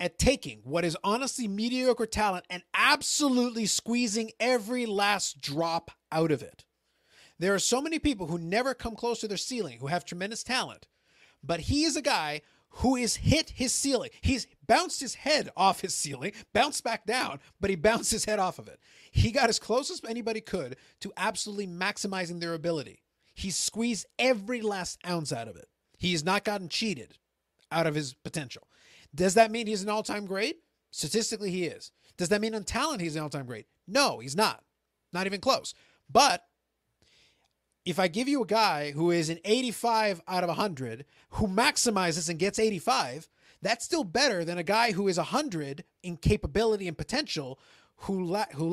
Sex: male